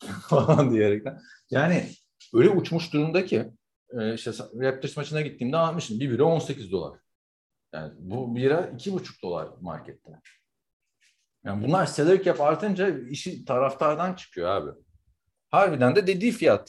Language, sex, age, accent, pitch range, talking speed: Turkish, male, 50-69, native, 115-160 Hz, 125 wpm